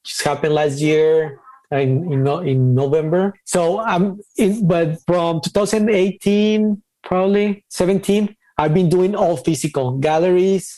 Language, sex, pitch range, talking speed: English, male, 150-190 Hz, 130 wpm